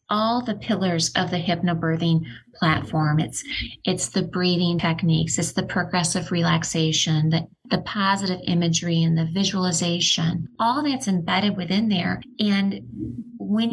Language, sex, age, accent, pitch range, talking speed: English, female, 30-49, American, 170-200 Hz, 130 wpm